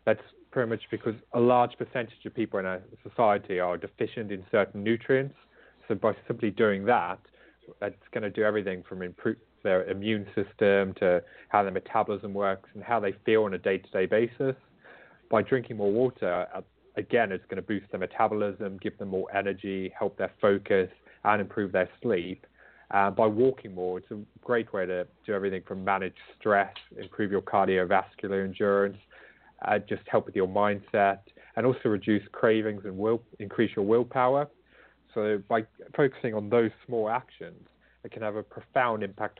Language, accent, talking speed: English, British, 170 wpm